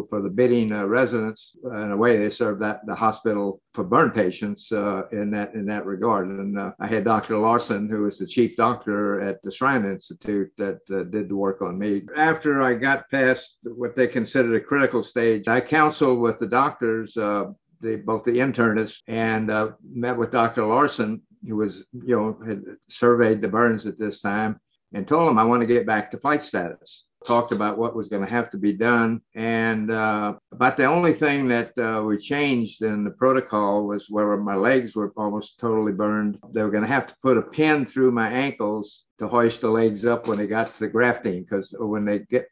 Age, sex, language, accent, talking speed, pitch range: 50-69, male, English, American, 210 wpm, 105-120 Hz